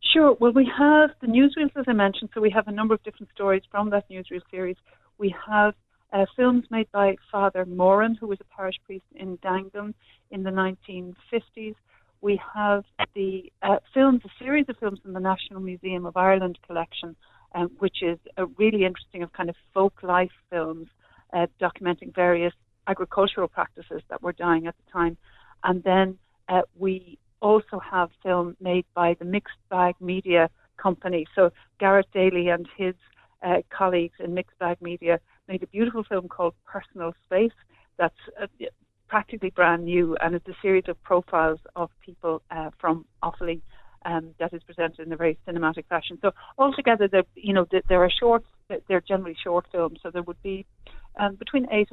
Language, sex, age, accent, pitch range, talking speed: English, female, 60-79, Irish, 175-205 Hz, 175 wpm